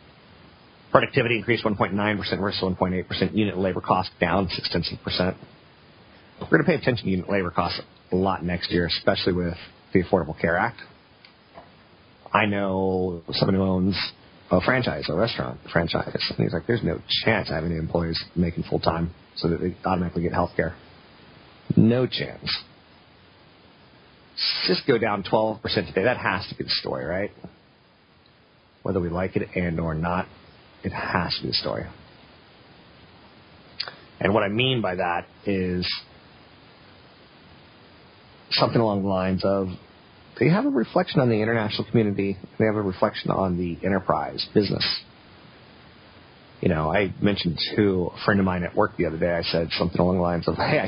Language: English